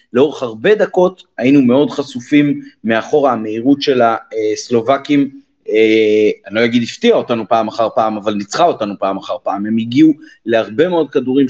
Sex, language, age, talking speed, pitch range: male, Hebrew, 30-49, 155 wpm, 115-180 Hz